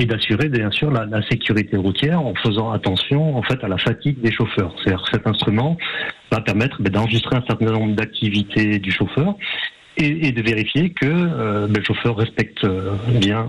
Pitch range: 100-125 Hz